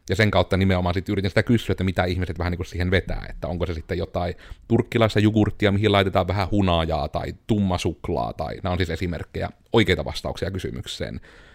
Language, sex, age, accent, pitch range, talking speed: Finnish, male, 30-49, native, 95-125 Hz, 190 wpm